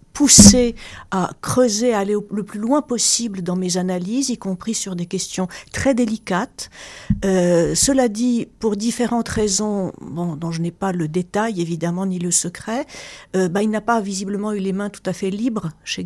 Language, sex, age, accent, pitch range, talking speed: French, female, 50-69, French, 185-235 Hz, 190 wpm